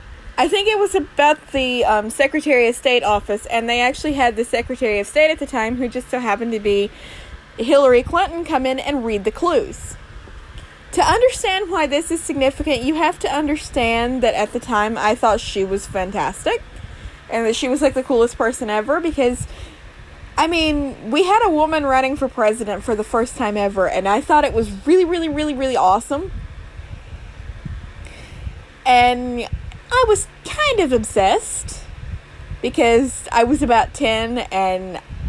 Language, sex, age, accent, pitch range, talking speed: English, female, 20-39, American, 200-280 Hz, 170 wpm